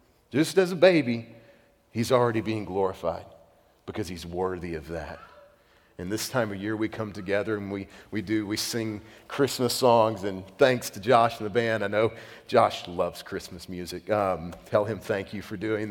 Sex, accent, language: male, American, English